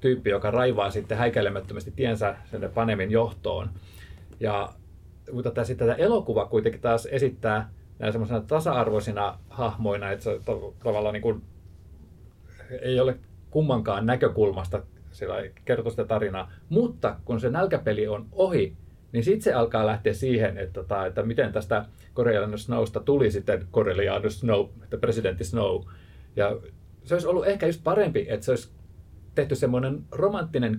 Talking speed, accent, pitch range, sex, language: 125 wpm, native, 100-130 Hz, male, Finnish